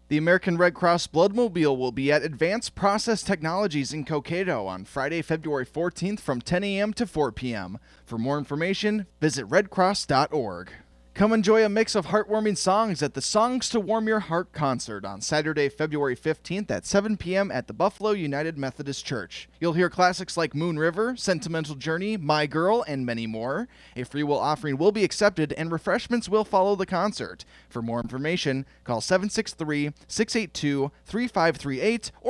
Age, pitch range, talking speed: 20-39, 135-200 Hz, 165 wpm